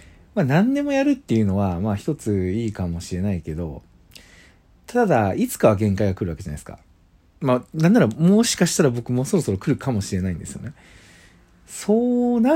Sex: male